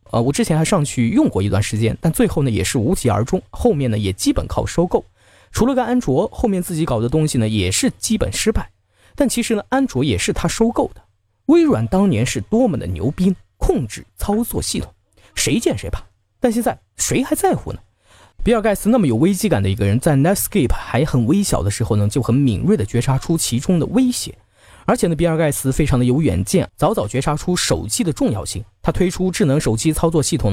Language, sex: Chinese, male